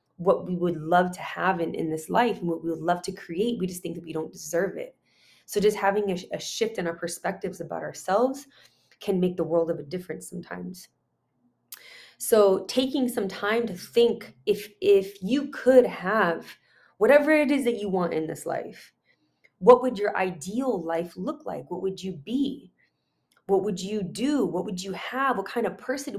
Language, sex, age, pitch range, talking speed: English, female, 20-39, 175-220 Hz, 200 wpm